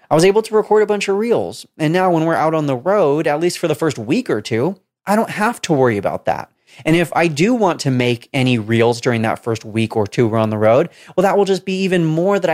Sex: male